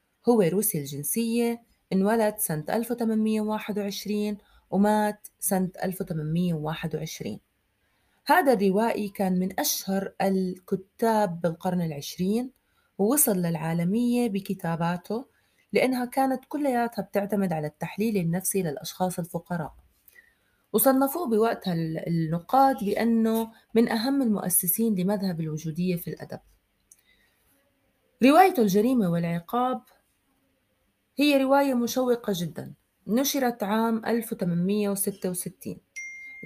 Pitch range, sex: 180-230 Hz, female